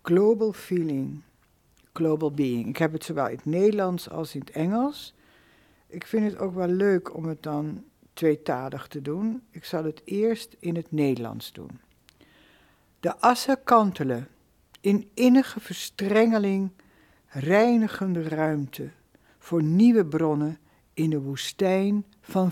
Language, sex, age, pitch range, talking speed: Dutch, female, 60-79, 150-205 Hz, 135 wpm